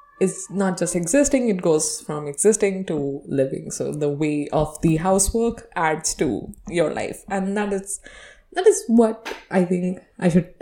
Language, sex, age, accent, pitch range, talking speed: English, female, 20-39, Indian, 160-220 Hz, 170 wpm